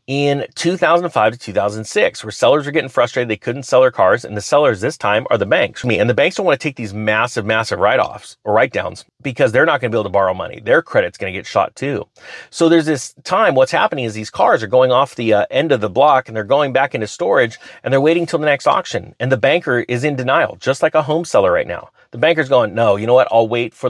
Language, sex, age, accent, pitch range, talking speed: English, male, 30-49, American, 110-150 Hz, 270 wpm